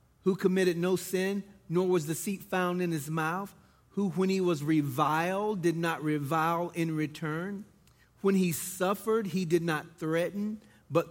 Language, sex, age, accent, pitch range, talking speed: English, male, 40-59, American, 140-185 Hz, 160 wpm